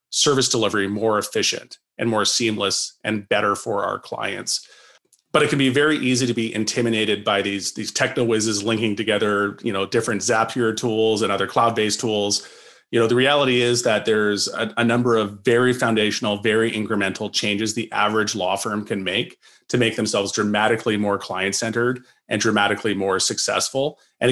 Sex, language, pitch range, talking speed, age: male, English, 105-120 Hz, 175 wpm, 30-49